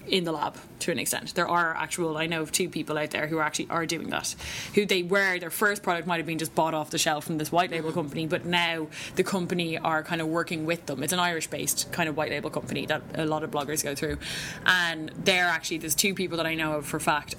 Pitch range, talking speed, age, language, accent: 160-190 Hz, 270 wpm, 20-39, English, Irish